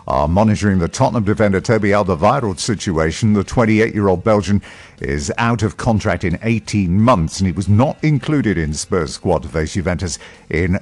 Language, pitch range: English, 85-110 Hz